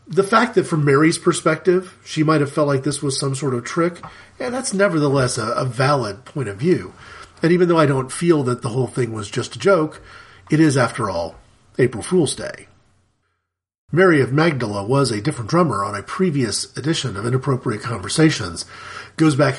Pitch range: 125-160 Hz